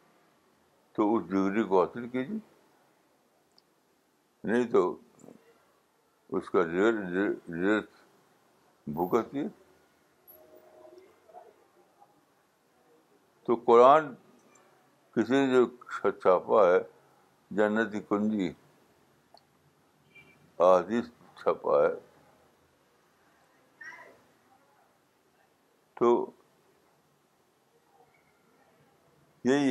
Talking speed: 50 wpm